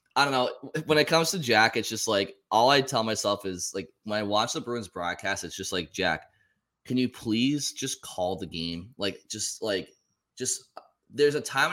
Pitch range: 100-120 Hz